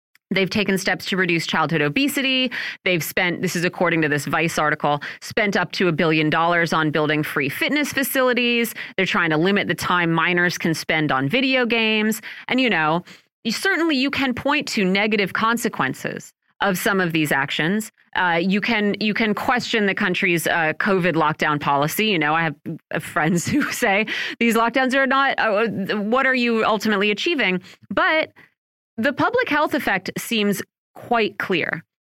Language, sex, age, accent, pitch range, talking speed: English, female, 30-49, American, 170-245 Hz, 170 wpm